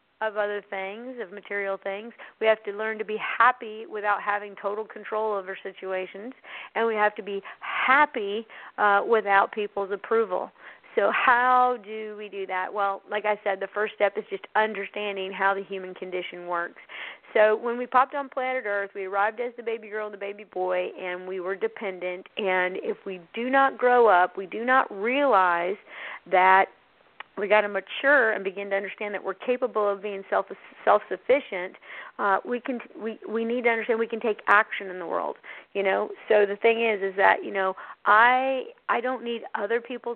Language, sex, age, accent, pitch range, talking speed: English, female, 40-59, American, 195-225 Hz, 195 wpm